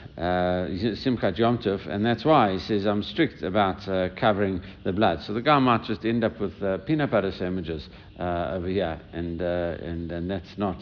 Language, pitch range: English, 90-110 Hz